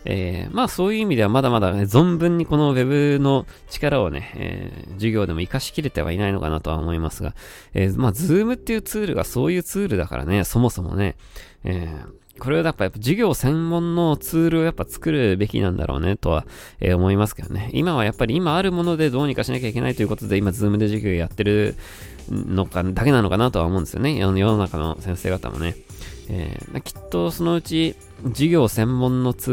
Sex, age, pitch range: male, 20-39, 90-135 Hz